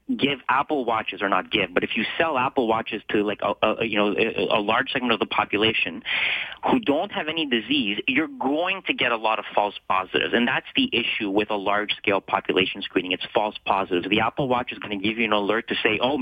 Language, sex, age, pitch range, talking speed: English, male, 30-49, 110-145 Hz, 235 wpm